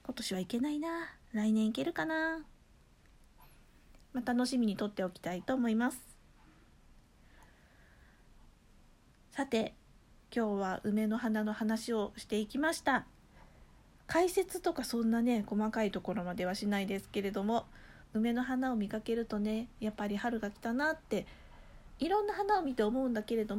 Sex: female